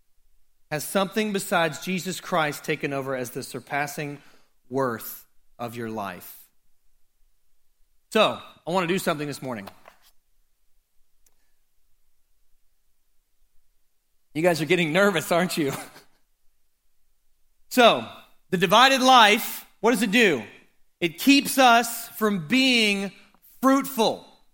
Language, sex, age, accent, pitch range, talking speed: English, male, 40-59, American, 155-245 Hz, 105 wpm